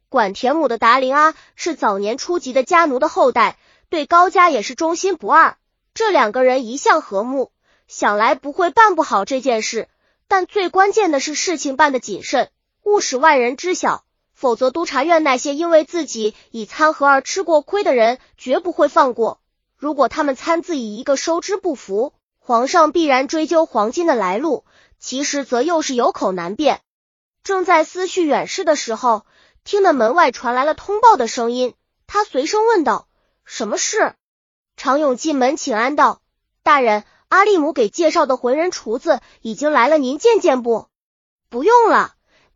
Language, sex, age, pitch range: Chinese, female, 20-39, 255-340 Hz